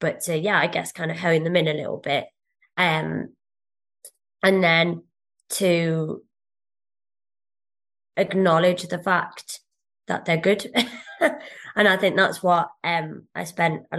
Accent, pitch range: British, 160-185 Hz